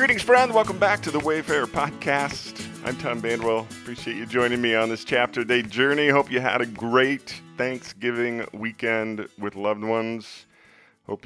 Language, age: English, 40-59